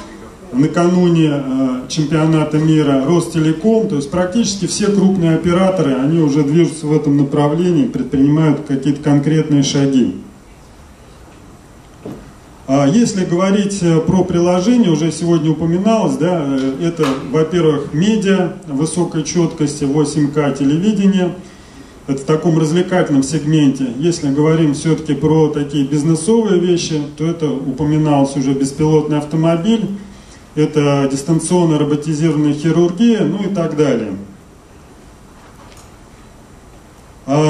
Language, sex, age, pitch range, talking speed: Russian, male, 30-49, 145-175 Hz, 100 wpm